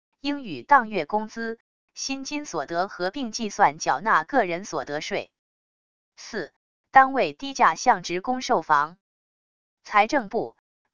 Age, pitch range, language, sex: 20-39, 180-255 Hz, Chinese, female